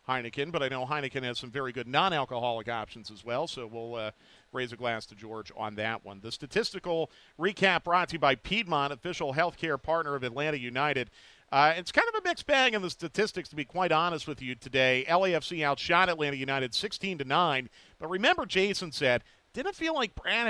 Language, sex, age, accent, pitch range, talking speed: English, male, 40-59, American, 130-175 Hz, 205 wpm